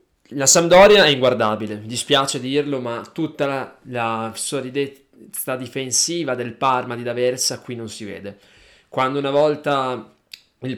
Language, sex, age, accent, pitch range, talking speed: Italian, male, 20-39, native, 125-150 Hz, 135 wpm